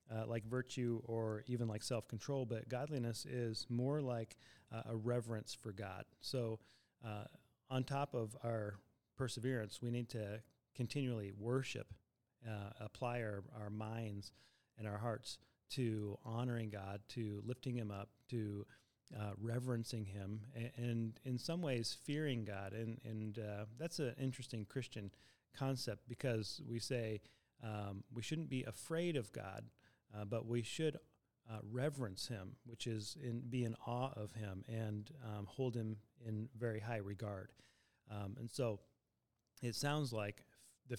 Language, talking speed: English, 150 wpm